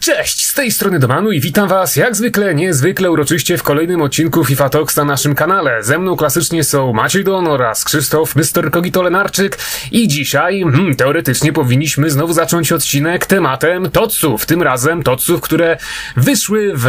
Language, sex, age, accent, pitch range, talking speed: Polish, male, 30-49, native, 140-180 Hz, 165 wpm